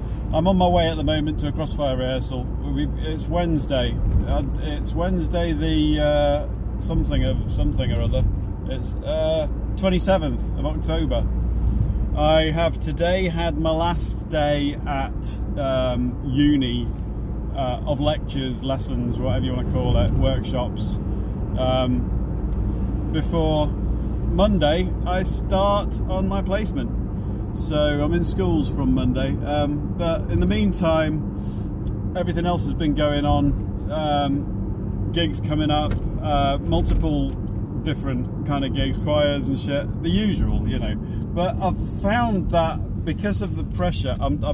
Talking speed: 135 wpm